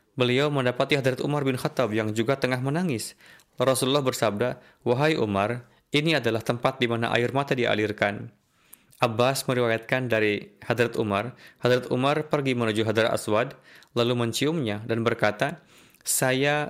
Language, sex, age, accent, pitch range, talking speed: Indonesian, male, 20-39, native, 115-135 Hz, 135 wpm